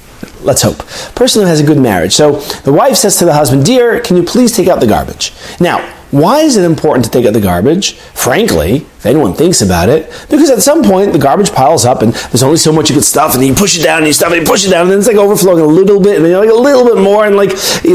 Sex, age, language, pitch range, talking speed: male, 30-49, English, 155-215 Hz, 300 wpm